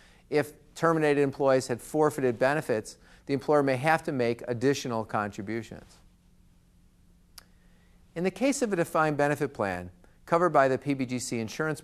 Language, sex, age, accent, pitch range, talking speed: English, male, 50-69, American, 115-155 Hz, 135 wpm